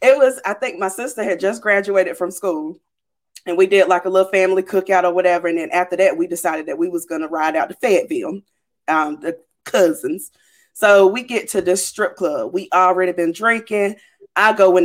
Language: English